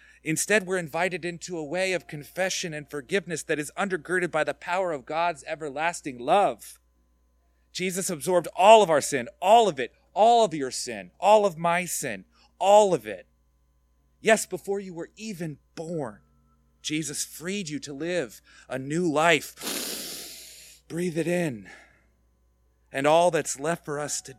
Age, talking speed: 30-49, 155 wpm